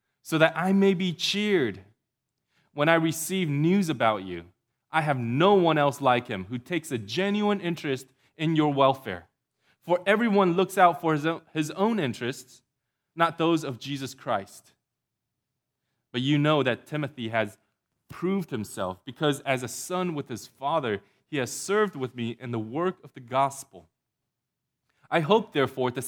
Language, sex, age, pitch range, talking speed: English, male, 20-39, 125-160 Hz, 160 wpm